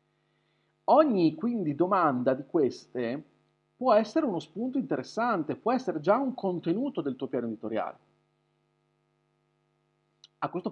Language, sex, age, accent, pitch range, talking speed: Italian, male, 40-59, native, 160-205 Hz, 120 wpm